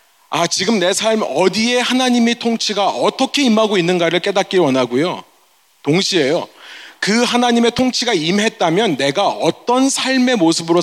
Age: 30-49